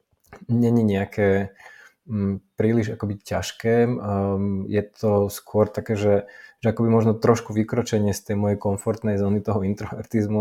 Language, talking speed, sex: Slovak, 135 wpm, male